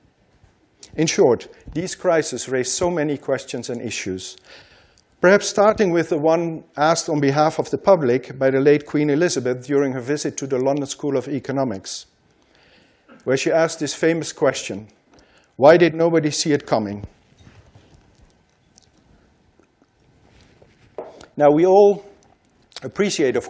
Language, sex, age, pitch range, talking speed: English, male, 50-69, 135-175 Hz, 135 wpm